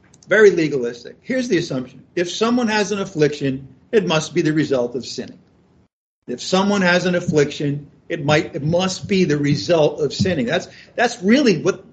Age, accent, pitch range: 50-69, American, 150-190 Hz